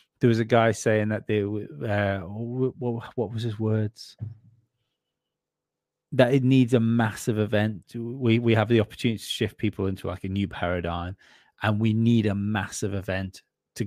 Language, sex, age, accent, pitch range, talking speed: English, male, 30-49, British, 100-120 Hz, 165 wpm